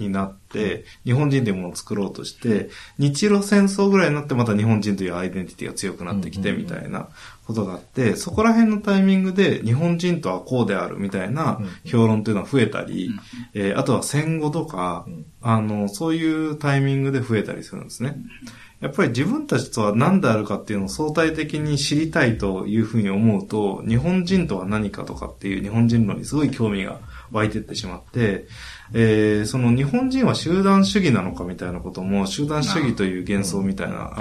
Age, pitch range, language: 20-39, 100-145 Hz, Japanese